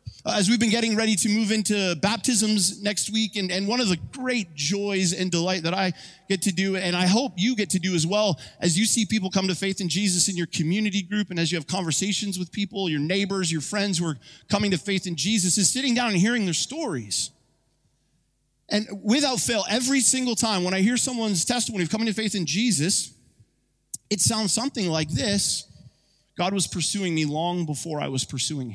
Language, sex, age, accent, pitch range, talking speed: English, male, 30-49, American, 160-215 Hz, 215 wpm